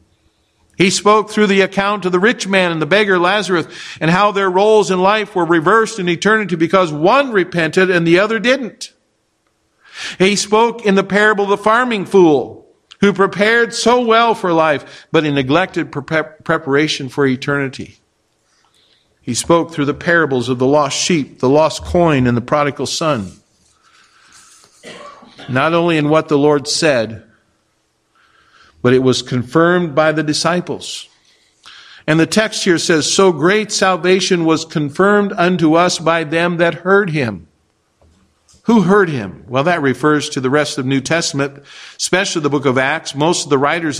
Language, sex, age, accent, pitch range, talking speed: English, male, 50-69, American, 145-195 Hz, 160 wpm